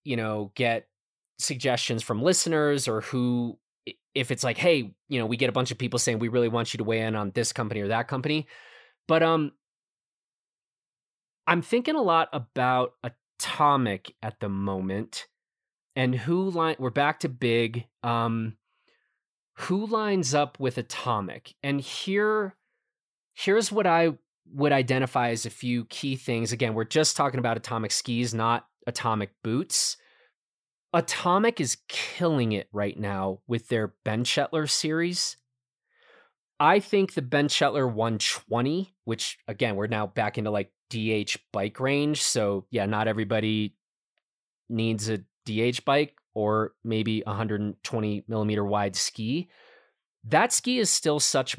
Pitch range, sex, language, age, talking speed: 110-150 Hz, male, English, 20-39, 145 wpm